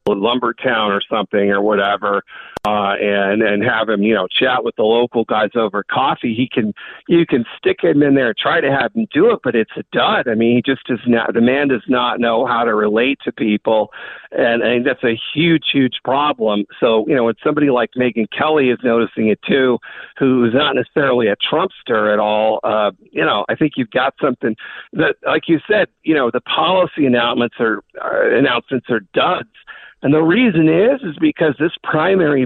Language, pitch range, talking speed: English, 110-145 Hz, 205 wpm